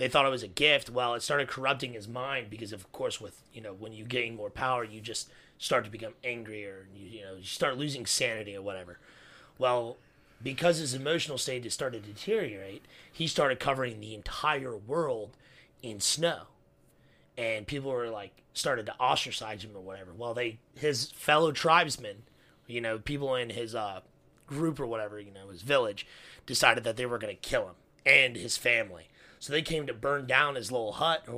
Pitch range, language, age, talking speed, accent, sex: 115-140 Hz, English, 30-49, 200 wpm, American, male